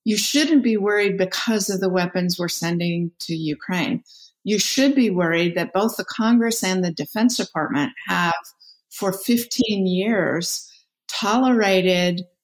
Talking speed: 140 wpm